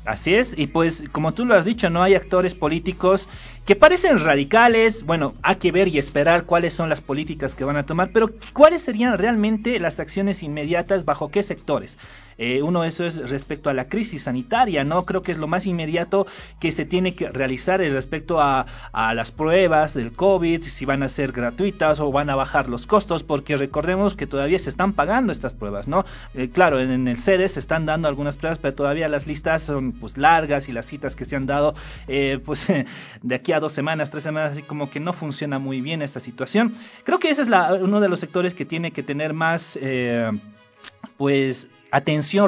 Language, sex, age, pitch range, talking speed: Spanish, male, 30-49, 140-185 Hz, 210 wpm